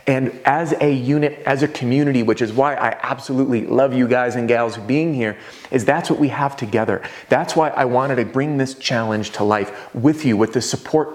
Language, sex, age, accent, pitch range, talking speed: English, male, 30-49, American, 115-150 Hz, 215 wpm